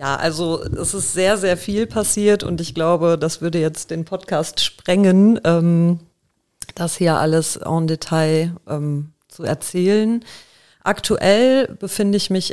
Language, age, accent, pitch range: German, 30-49, German, 165-200 Hz